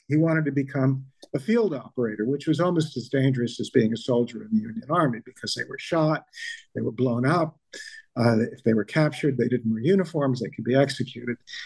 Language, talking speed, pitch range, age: English, 210 wpm, 130-160 Hz, 50-69